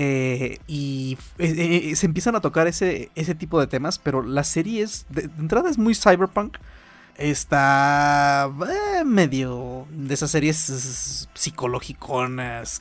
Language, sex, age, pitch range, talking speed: Spanish, male, 30-49, 130-160 Hz, 135 wpm